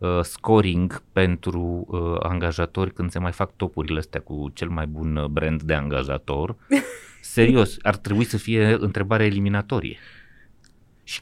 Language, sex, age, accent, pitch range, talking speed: Romanian, male, 30-49, native, 90-115 Hz, 130 wpm